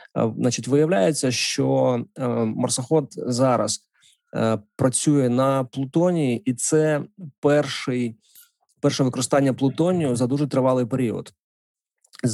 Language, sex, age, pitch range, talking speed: Ukrainian, male, 20-39, 120-145 Hz, 90 wpm